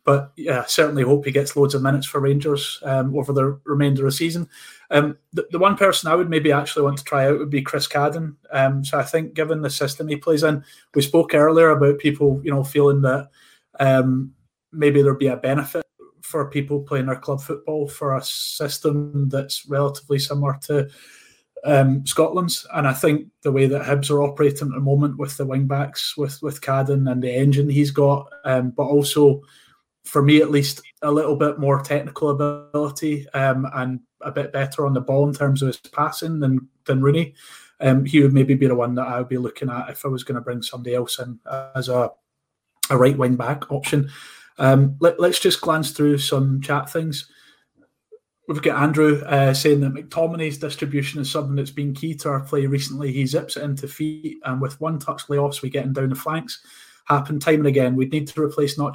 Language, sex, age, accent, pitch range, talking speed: English, male, 30-49, British, 135-150 Hz, 210 wpm